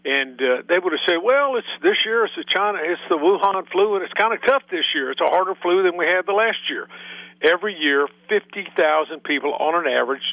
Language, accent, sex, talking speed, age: English, American, male, 245 wpm, 50-69